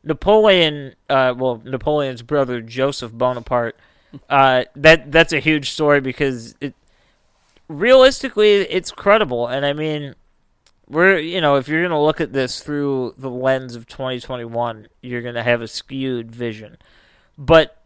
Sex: male